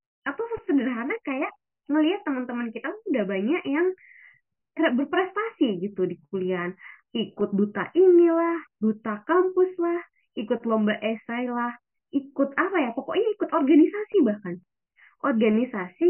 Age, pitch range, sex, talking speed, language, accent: 20-39, 215-320 Hz, female, 120 wpm, Indonesian, native